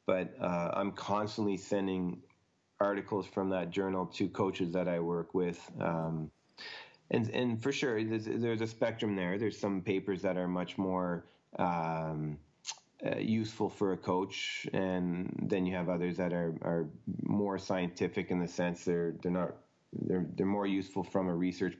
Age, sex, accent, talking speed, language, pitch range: 30-49, male, American, 170 wpm, English, 85-100 Hz